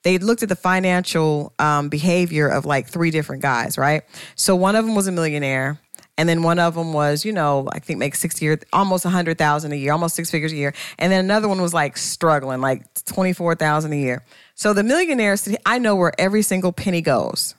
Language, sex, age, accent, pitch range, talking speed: English, female, 40-59, American, 150-195 Hz, 230 wpm